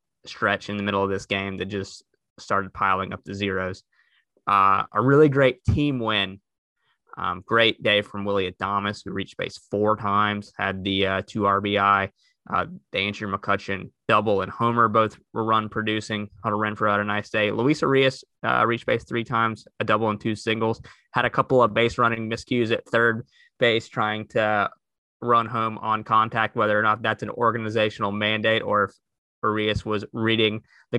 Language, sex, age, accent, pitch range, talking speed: English, male, 20-39, American, 100-120 Hz, 185 wpm